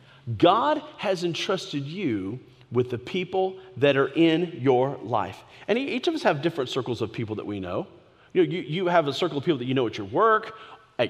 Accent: American